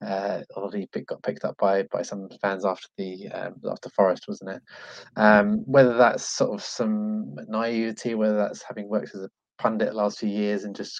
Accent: British